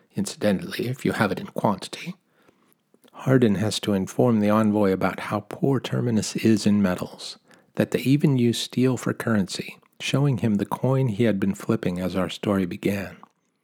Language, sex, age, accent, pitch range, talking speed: English, male, 50-69, American, 100-135 Hz, 170 wpm